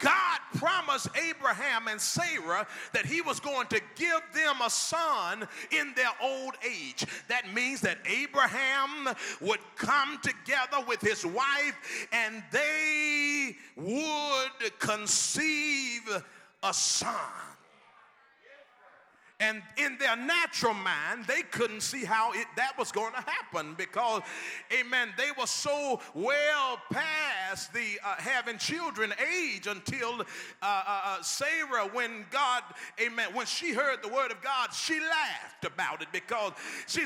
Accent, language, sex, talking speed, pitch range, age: American, English, male, 130 wpm, 230-310 Hz, 40-59